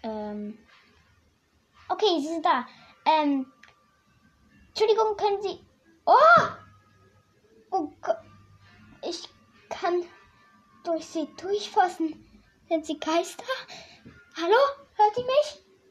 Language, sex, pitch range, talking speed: German, female, 240-360 Hz, 90 wpm